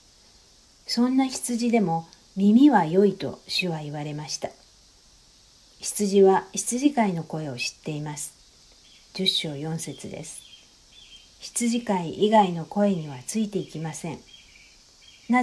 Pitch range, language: 160-210 Hz, Japanese